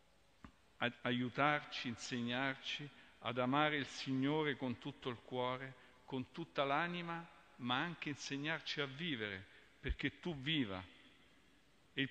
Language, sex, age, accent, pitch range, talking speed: Italian, male, 50-69, native, 125-155 Hz, 115 wpm